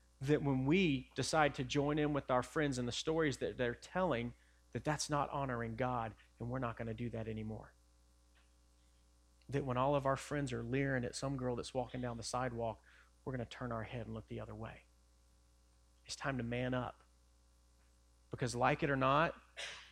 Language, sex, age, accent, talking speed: English, male, 30-49, American, 200 wpm